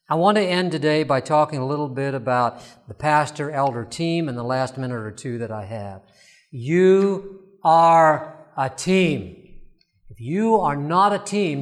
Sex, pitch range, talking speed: male, 130-175 Hz, 170 wpm